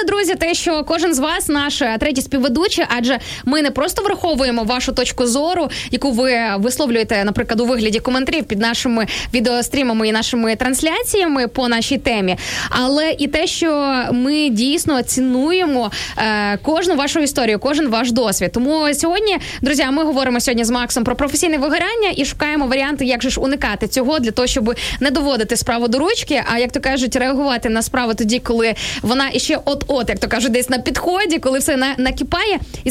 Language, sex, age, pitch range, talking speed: Ukrainian, female, 20-39, 245-310 Hz, 175 wpm